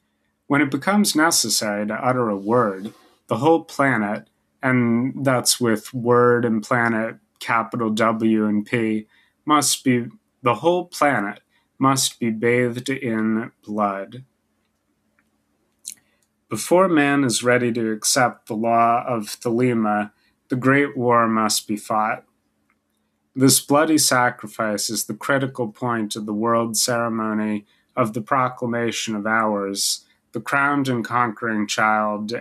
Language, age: English, 30-49